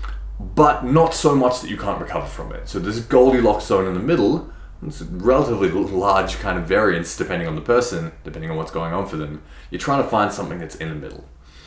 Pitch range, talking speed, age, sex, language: 80-120 Hz, 225 wpm, 20-39, male, English